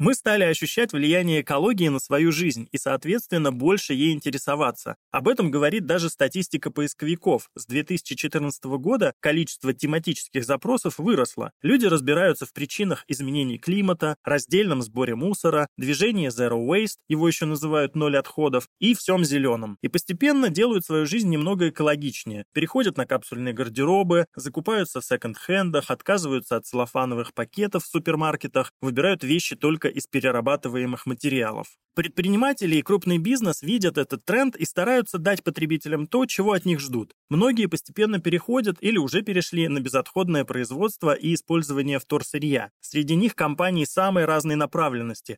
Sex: male